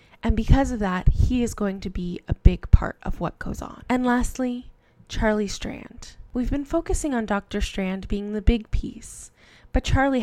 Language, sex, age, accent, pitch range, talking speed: English, female, 10-29, American, 195-245 Hz, 190 wpm